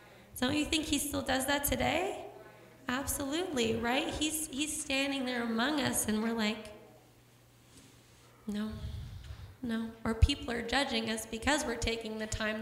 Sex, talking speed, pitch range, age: female, 150 wpm, 215-250 Hz, 20-39